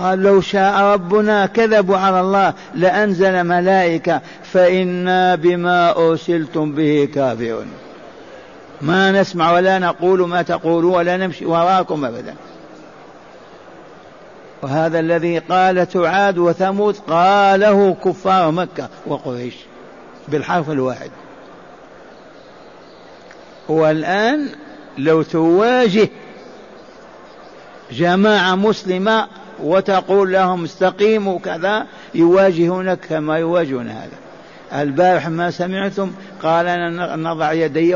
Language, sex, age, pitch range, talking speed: Arabic, male, 60-79, 160-190 Hz, 85 wpm